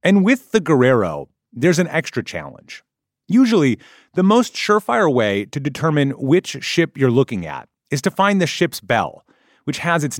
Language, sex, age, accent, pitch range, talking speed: English, male, 30-49, American, 125-180 Hz, 170 wpm